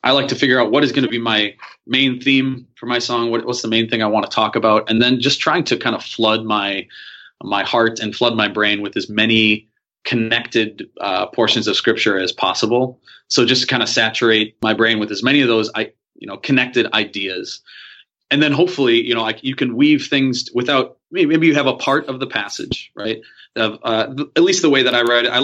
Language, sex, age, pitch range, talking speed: English, male, 30-49, 110-125 Hz, 230 wpm